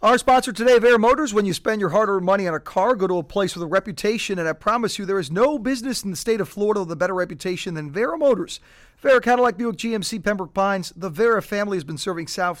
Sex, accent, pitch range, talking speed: male, American, 165-210 Hz, 255 wpm